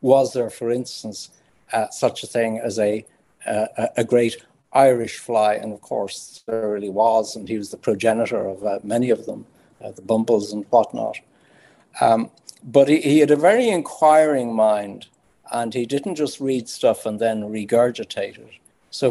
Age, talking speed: 60-79, 175 wpm